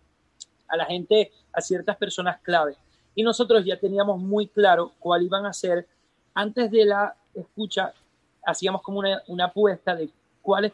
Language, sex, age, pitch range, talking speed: Spanish, male, 30-49, 170-215 Hz, 155 wpm